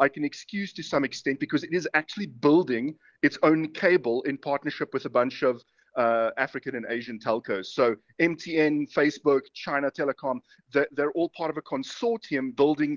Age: 30-49